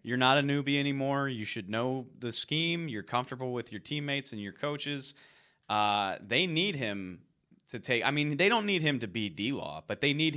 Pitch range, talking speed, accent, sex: 95-130 Hz, 210 wpm, American, male